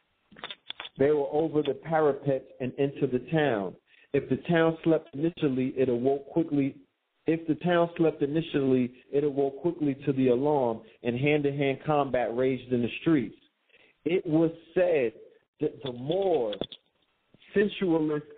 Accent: American